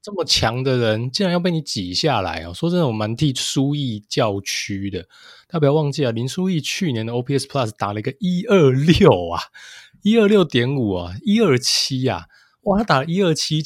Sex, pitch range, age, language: male, 105-145 Hz, 20-39, Chinese